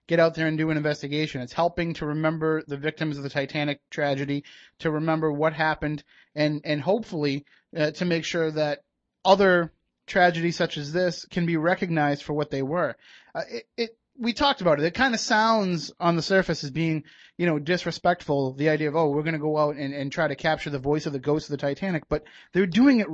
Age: 30-49